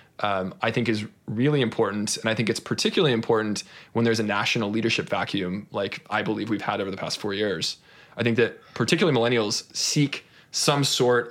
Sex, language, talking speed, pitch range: male, English, 190 wpm, 110-125 Hz